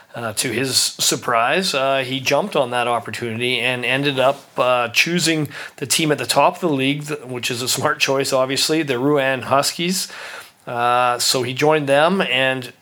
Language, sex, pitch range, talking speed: English, male, 125-155 Hz, 180 wpm